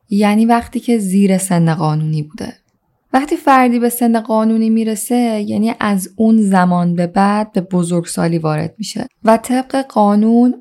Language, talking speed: Persian, 145 wpm